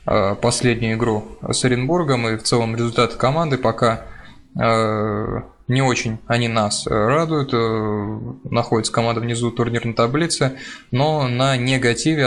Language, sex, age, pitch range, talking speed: Russian, male, 20-39, 115-130 Hz, 115 wpm